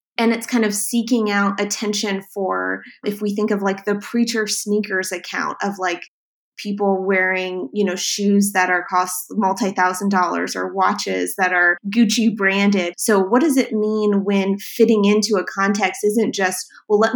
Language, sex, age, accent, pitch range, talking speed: English, female, 20-39, American, 190-215 Hz, 175 wpm